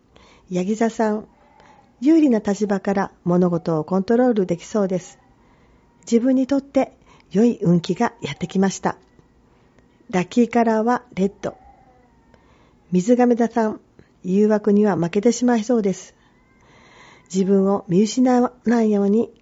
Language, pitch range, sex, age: Japanese, 185-235 Hz, female, 40-59